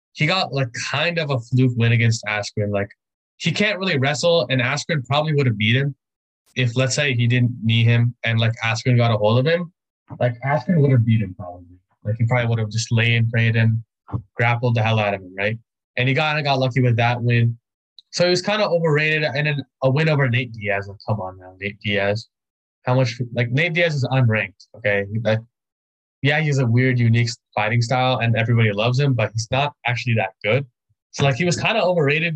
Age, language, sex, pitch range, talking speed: 20-39, English, male, 115-145 Hz, 230 wpm